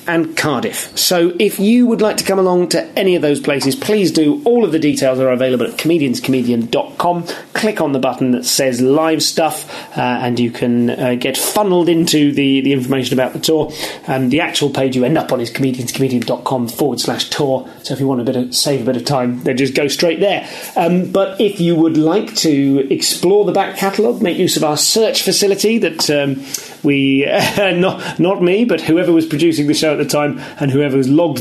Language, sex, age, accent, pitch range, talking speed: English, male, 30-49, British, 130-165 Hz, 210 wpm